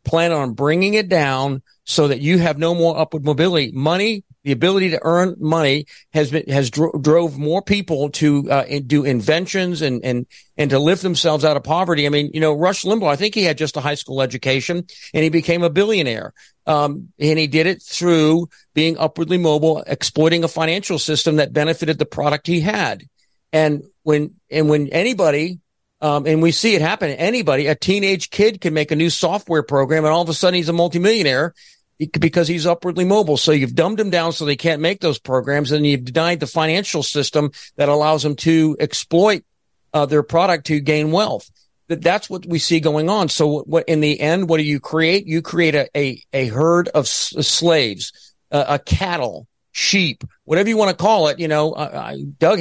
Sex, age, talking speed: male, 50-69, 200 wpm